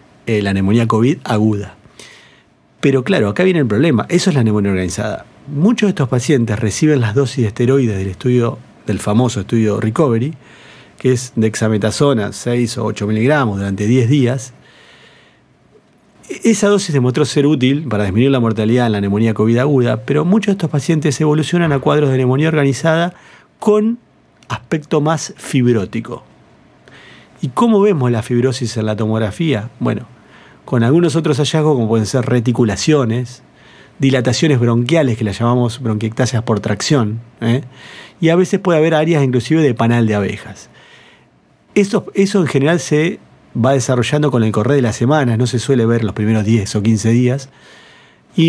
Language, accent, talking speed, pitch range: Spanish, Argentinian, 160 wpm, 115-150 Hz